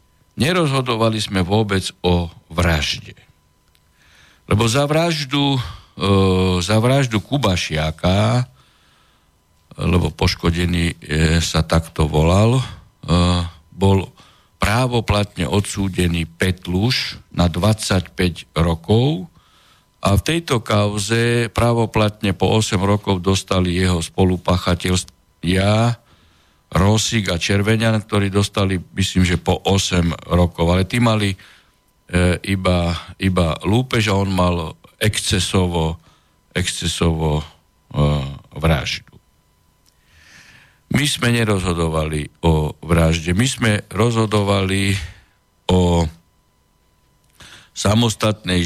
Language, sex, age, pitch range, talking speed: Slovak, male, 60-79, 85-105 Hz, 85 wpm